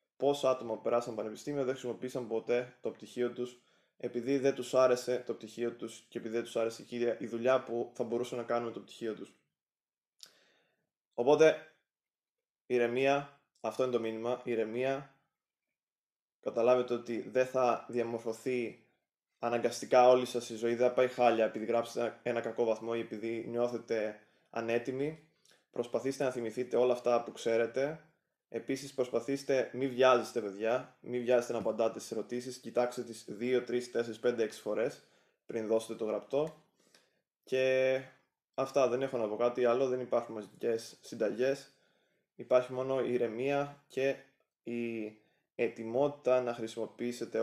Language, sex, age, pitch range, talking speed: Greek, male, 20-39, 115-130 Hz, 145 wpm